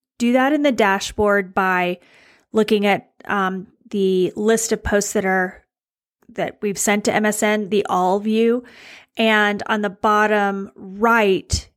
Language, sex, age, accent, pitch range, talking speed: English, female, 30-49, American, 195-230 Hz, 145 wpm